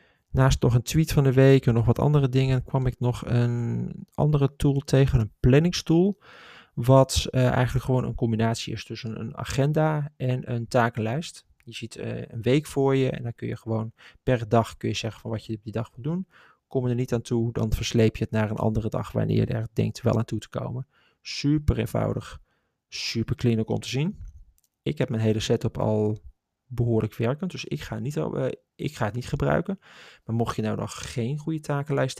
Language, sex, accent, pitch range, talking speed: Dutch, male, Dutch, 110-135 Hz, 215 wpm